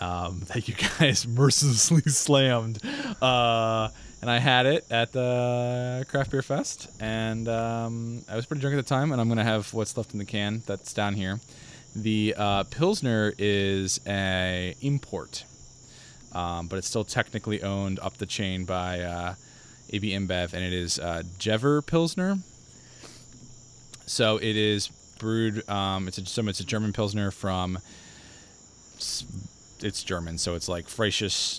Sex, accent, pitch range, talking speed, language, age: male, American, 95-115 Hz, 155 wpm, English, 20-39